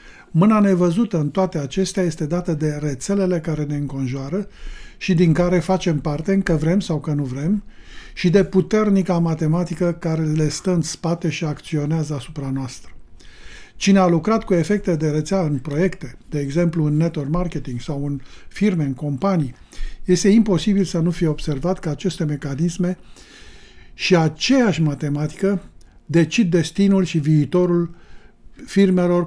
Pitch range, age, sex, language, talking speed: 150-185 Hz, 50-69, male, Romanian, 150 wpm